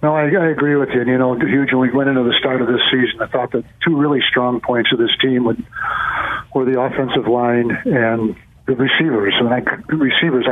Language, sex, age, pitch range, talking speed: English, male, 60-79, 120-135 Hz, 225 wpm